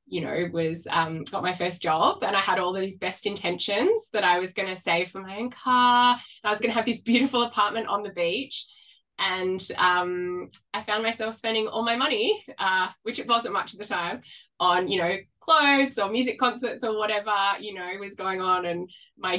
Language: English